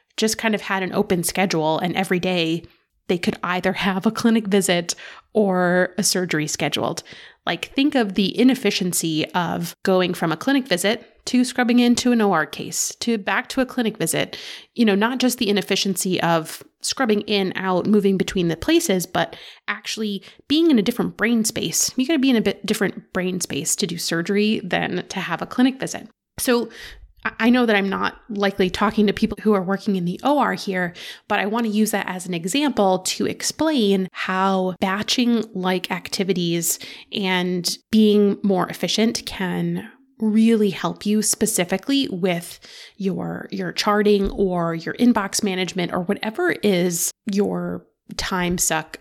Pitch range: 180-220 Hz